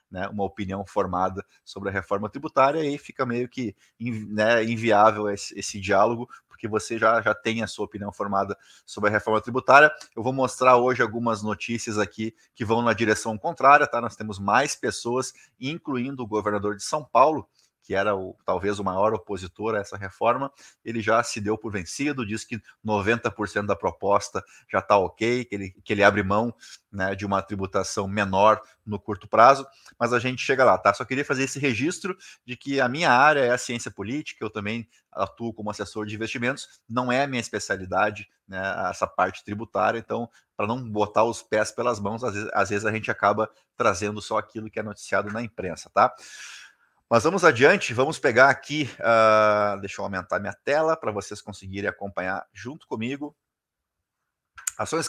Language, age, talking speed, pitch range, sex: Portuguese, 20-39, 180 wpm, 105-125 Hz, male